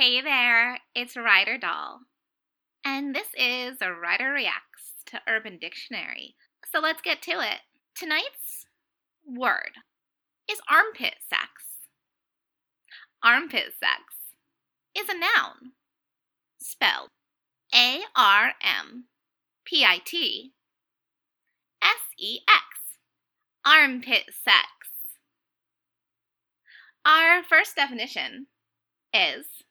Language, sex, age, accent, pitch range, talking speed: English, female, 20-39, American, 250-350 Hz, 90 wpm